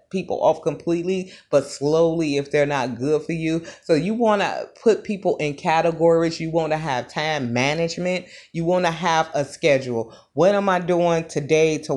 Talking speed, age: 185 wpm, 30-49